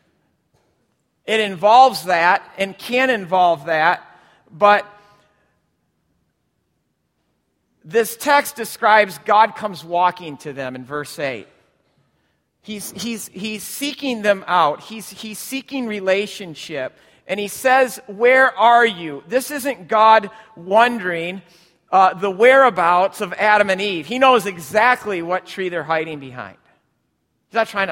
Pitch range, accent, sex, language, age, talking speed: 180-230 Hz, American, male, English, 40-59, 125 wpm